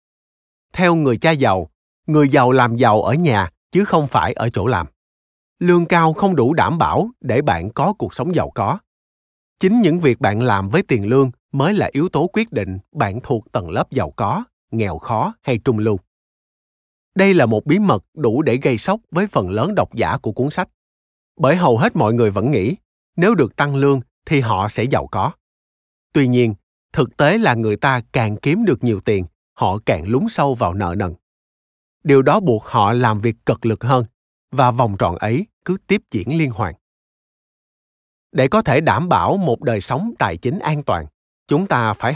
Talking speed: 200 wpm